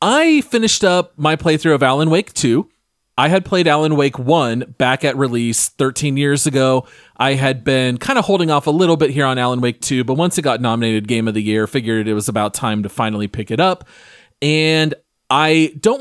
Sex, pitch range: male, 120-155 Hz